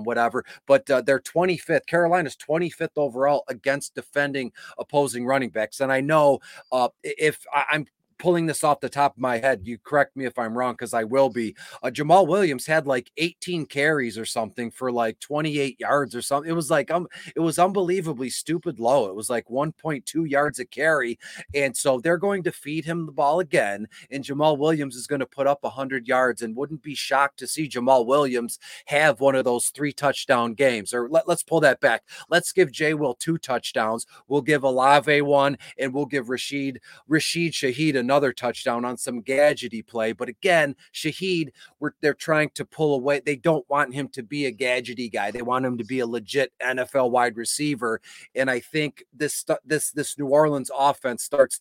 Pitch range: 125-150 Hz